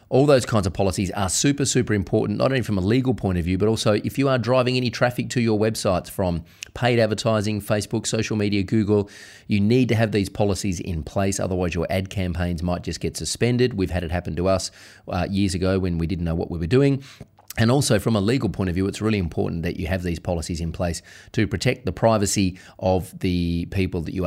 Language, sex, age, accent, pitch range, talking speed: English, male, 30-49, Australian, 90-110 Hz, 235 wpm